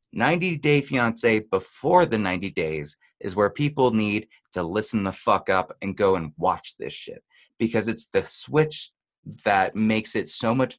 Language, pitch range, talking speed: English, 100-130 Hz, 170 wpm